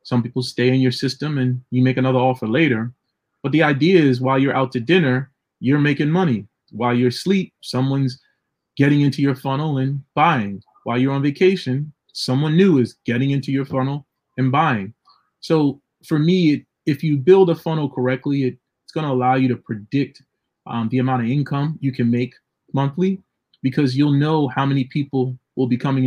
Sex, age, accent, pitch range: male, 30-49, American, 125-145 Hz